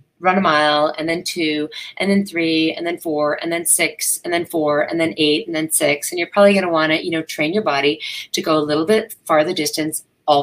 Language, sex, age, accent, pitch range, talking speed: English, female, 30-49, American, 150-195 Hz, 255 wpm